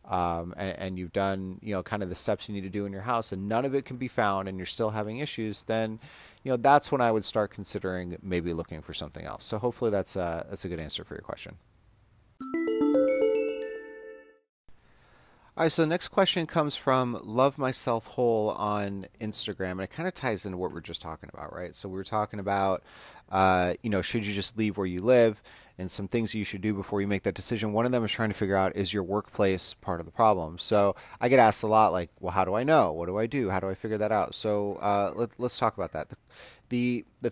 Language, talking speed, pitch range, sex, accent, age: English, 245 wpm, 95-120 Hz, male, American, 30-49